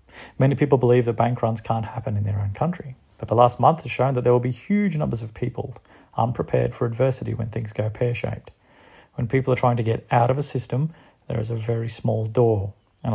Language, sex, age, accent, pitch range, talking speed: English, male, 30-49, Australian, 110-125 Hz, 230 wpm